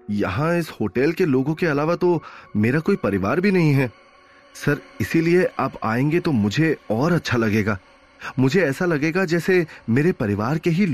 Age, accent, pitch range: 30-49, native, 100-135 Hz